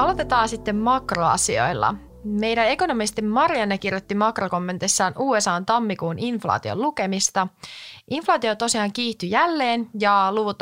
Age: 30-49